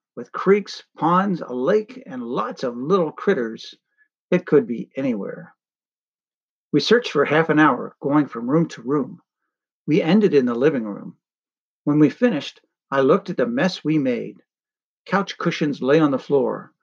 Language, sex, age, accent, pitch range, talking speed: English, male, 50-69, American, 145-205 Hz, 170 wpm